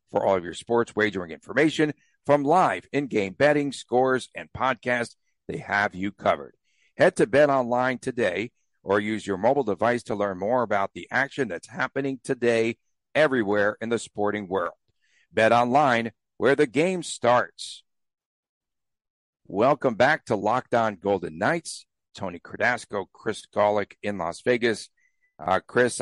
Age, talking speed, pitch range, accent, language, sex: 60-79, 145 wpm, 110-135 Hz, American, English, male